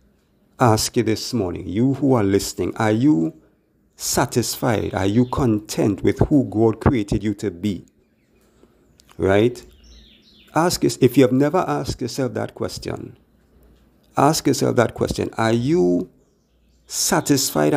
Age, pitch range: 50-69, 100-125 Hz